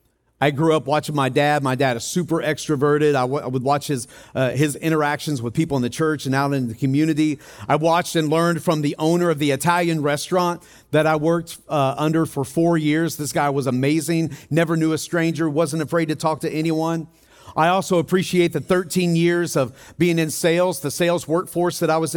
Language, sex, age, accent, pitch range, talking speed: English, male, 40-59, American, 135-165 Hz, 215 wpm